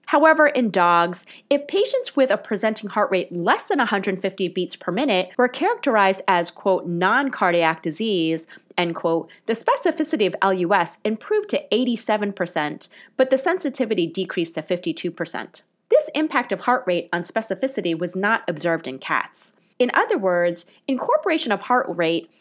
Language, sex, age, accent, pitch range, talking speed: English, female, 30-49, American, 175-260 Hz, 150 wpm